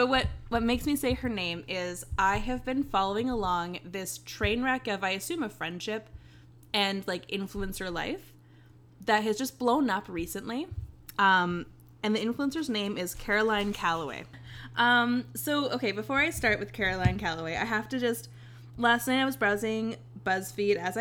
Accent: American